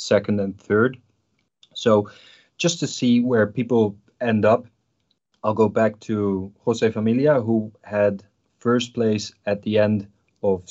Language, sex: English, male